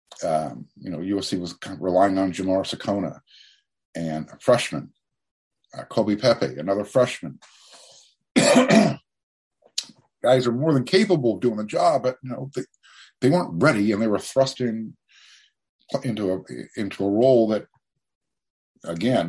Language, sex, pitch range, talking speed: English, male, 90-125 Hz, 145 wpm